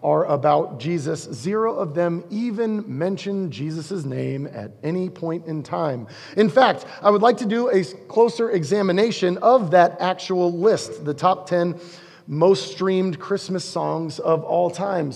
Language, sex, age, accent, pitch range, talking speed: English, male, 30-49, American, 150-205 Hz, 155 wpm